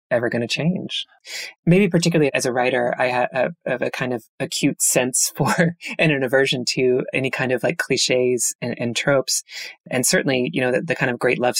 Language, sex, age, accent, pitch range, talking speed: English, female, 20-39, American, 125-150 Hz, 205 wpm